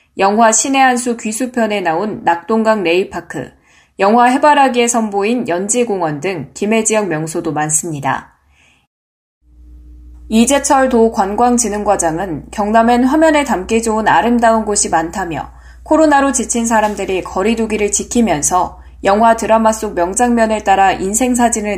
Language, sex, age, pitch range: Korean, female, 10-29, 170-235 Hz